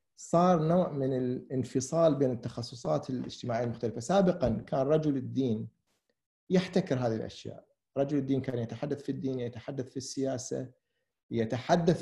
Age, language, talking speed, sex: 50-69, Arabic, 125 wpm, male